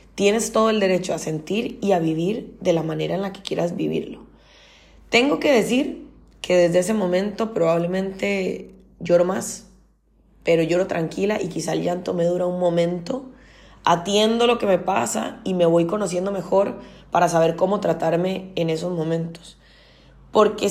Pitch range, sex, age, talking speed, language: 170-215 Hz, female, 20-39, 160 wpm, Spanish